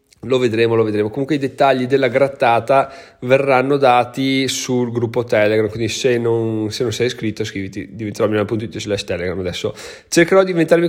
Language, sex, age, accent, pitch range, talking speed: Italian, male, 30-49, native, 110-145 Hz, 170 wpm